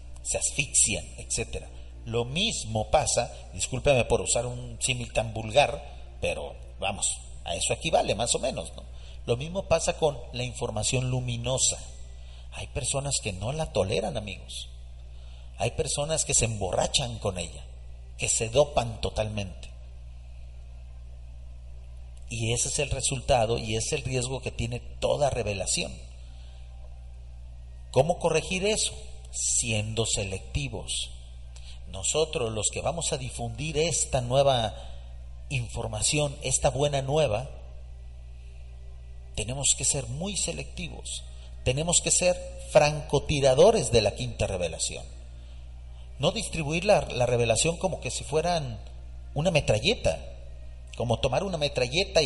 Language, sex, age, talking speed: Spanish, male, 50-69, 120 wpm